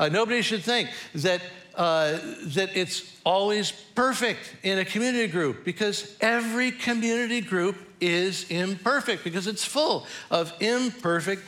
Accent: American